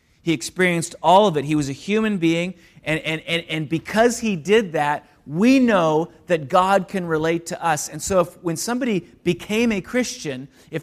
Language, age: English, 30-49